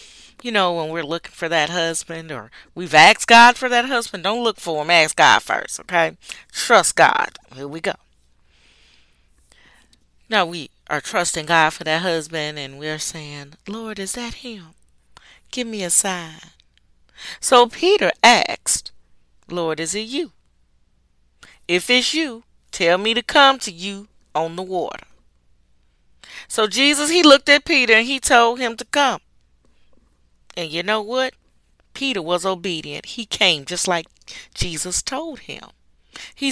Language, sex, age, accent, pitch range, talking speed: English, female, 40-59, American, 140-235 Hz, 155 wpm